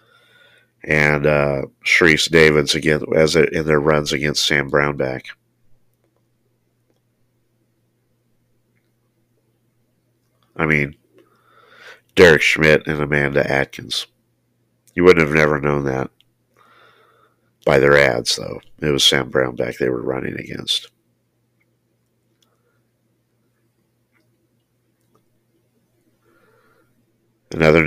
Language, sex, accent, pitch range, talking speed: English, male, American, 75-115 Hz, 85 wpm